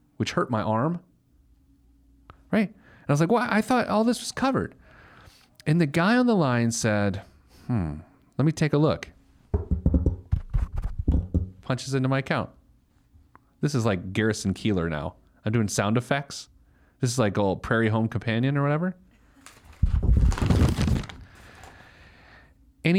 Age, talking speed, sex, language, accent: 30-49, 140 wpm, male, English, American